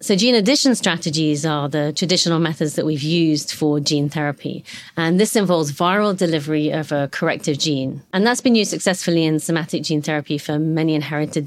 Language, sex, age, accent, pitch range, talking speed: English, female, 30-49, British, 155-185 Hz, 185 wpm